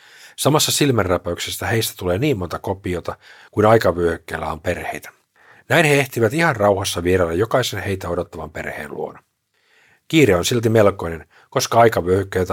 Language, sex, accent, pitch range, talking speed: Finnish, male, native, 85-115 Hz, 135 wpm